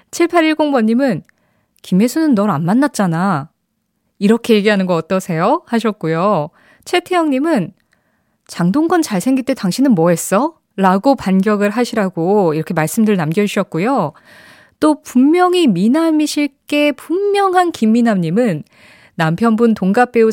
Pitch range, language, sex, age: 180-255 Hz, Korean, female, 20-39